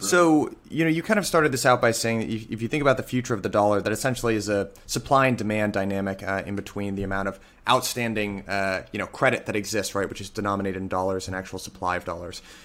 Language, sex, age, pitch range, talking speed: English, male, 30-49, 100-125 Hz, 250 wpm